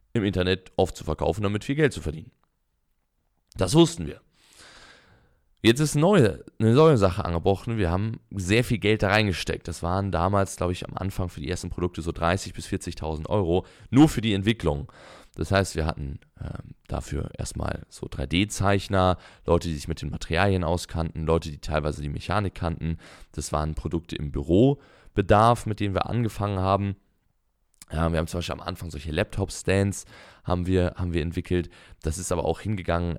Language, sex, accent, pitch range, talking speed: German, male, German, 85-110 Hz, 175 wpm